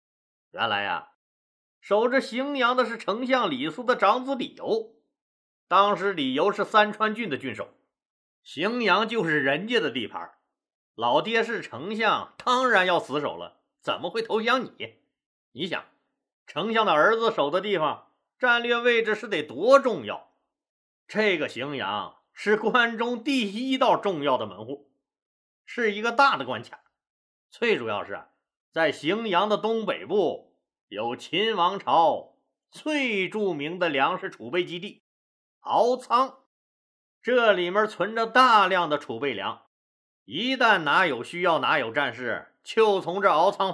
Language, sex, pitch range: Chinese, male, 180-250 Hz